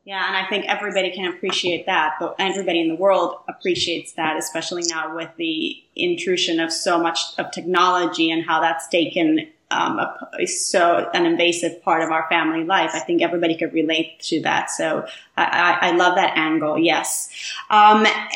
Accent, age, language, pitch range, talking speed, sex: American, 30-49, English, 180-215 Hz, 180 wpm, female